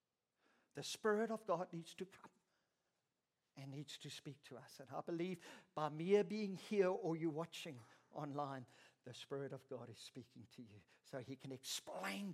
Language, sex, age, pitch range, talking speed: English, male, 50-69, 145-195 Hz, 175 wpm